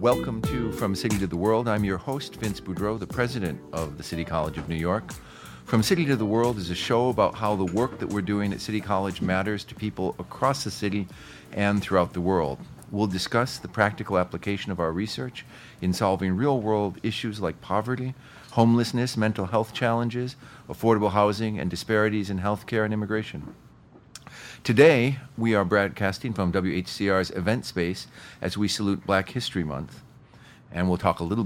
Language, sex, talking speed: English, male, 180 wpm